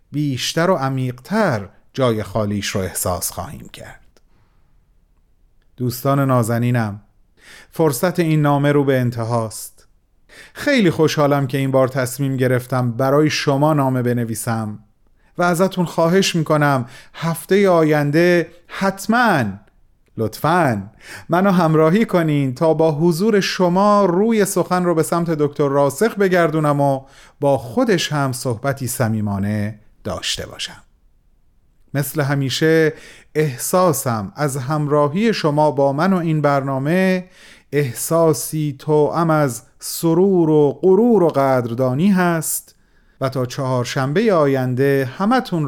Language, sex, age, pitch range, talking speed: Persian, male, 30-49, 125-170 Hz, 110 wpm